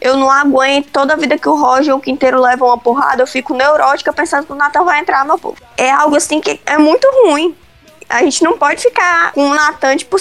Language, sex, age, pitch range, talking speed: Portuguese, female, 20-39, 260-315 Hz, 245 wpm